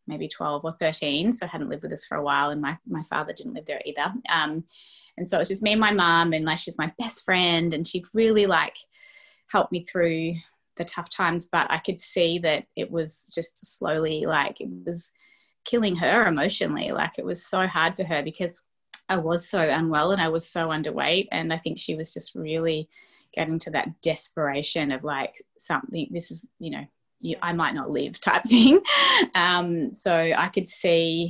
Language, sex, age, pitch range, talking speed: English, female, 20-39, 155-185 Hz, 205 wpm